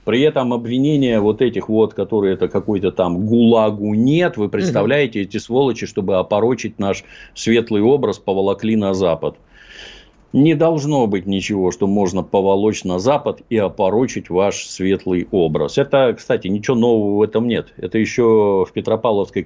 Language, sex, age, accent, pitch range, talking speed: Russian, male, 50-69, native, 95-120 Hz, 150 wpm